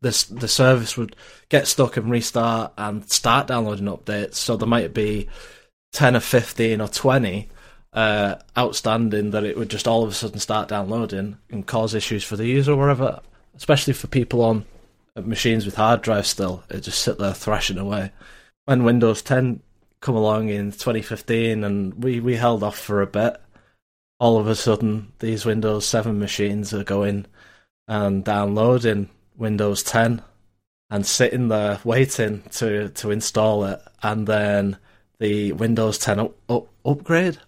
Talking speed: 160 wpm